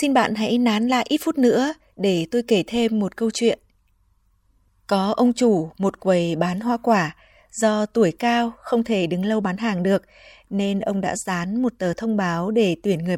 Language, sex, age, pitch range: Vietnamese, female, 20-39, 185-235 Hz